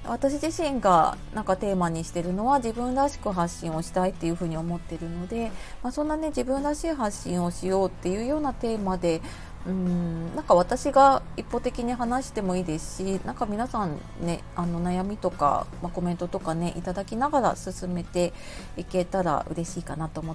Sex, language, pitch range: female, Japanese, 175-225 Hz